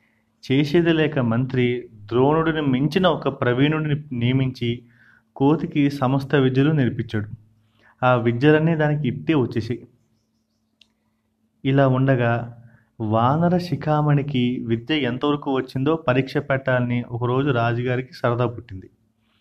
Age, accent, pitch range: 30-49, native, 115-140 Hz